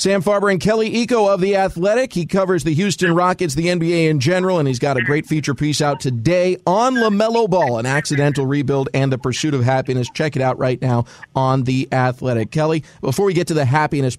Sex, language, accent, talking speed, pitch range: male, English, American, 220 wpm, 140-165 Hz